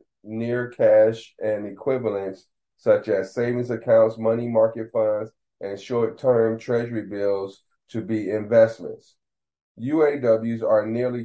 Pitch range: 105-115 Hz